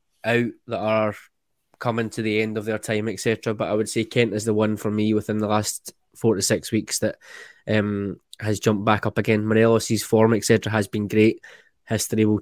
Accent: British